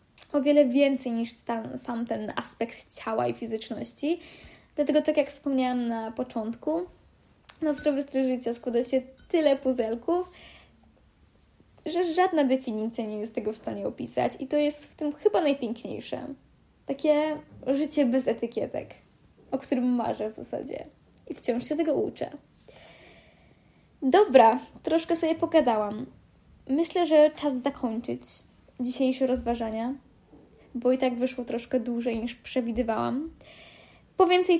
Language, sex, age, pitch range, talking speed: Polish, female, 10-29, 235-305 Hz, 130 wpm